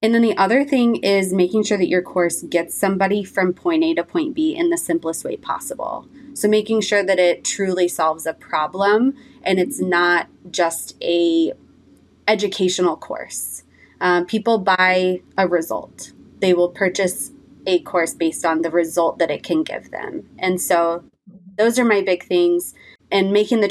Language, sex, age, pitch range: English, female, 20-39, 175-210 Hz